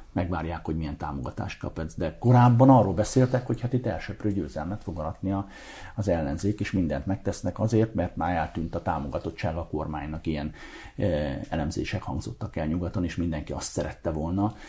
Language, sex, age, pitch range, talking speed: Hungarian, male, 50-69, 80-110 Hz, 155 wpm